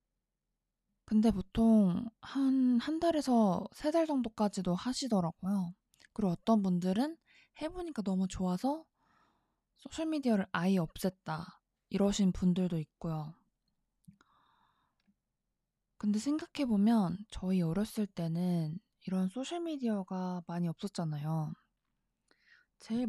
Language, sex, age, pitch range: Korean, female, 20-39, 180-240 Hz